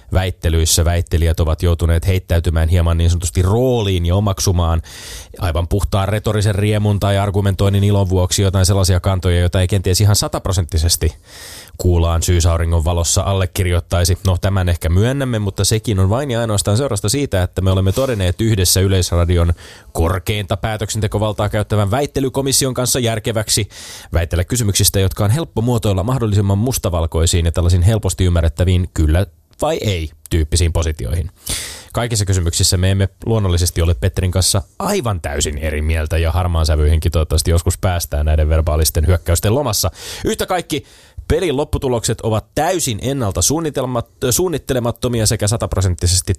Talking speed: 135 wpm